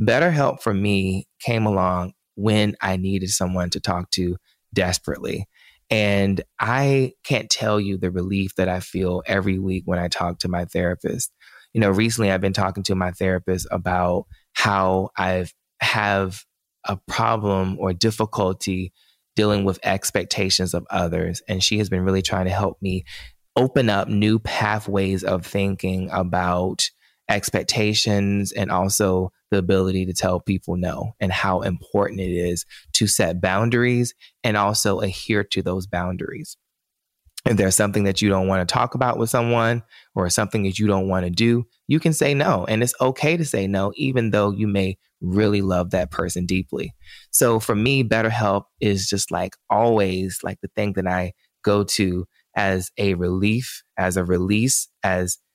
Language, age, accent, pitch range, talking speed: English, 20-39, American, 95-110 Hz, 165 wpm